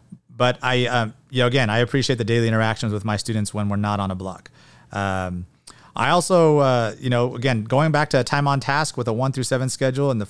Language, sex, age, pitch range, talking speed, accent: English, male, 30-49, 105-130 Hz, 245 wpm, American